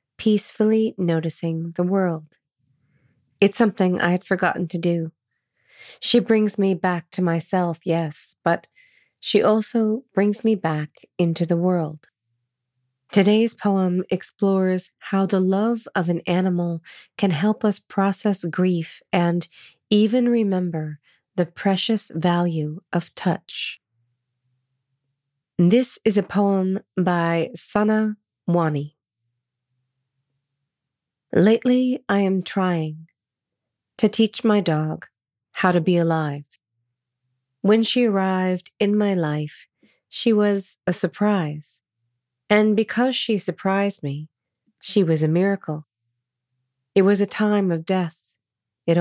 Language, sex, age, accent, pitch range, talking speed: English, female, 30-49, American, 155-205 Hz, 115 wpm